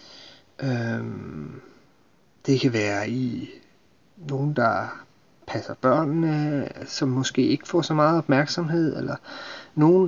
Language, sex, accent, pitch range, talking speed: Danish, male, native, 130-165 Hz, 105 wpm